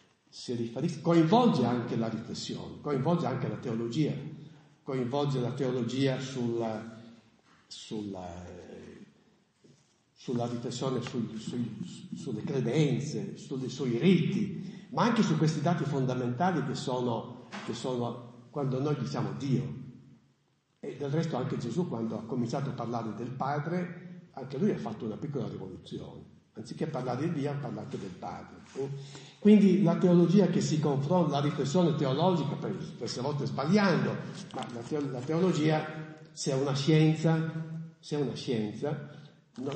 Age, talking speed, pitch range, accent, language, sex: 50-69, 125 wpm, 125-165 Hz, native, Italian, male